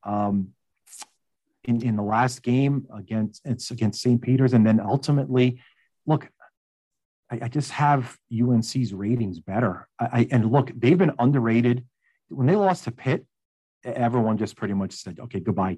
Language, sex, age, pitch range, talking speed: English, male, 40-59, 110-135 Hz, 155 wpm